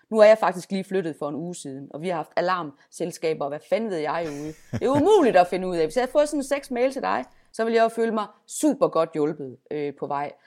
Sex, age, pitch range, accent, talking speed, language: female, 30-49, 170-240 Hz, native, 285 wpm, Danish